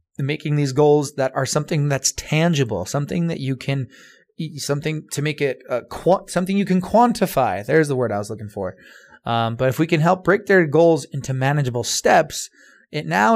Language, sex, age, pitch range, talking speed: English, male, 20-39, 135-175 Hz, 200 wpm